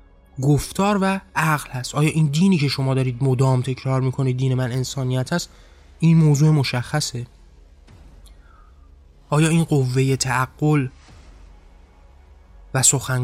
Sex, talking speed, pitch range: male, 120 wpm, 120-150 Hz